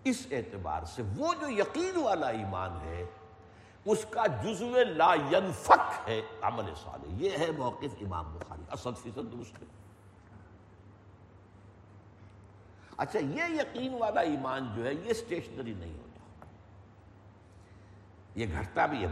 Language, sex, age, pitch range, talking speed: Urdu, male, 60-79, 95-140 Hz, 125 wpm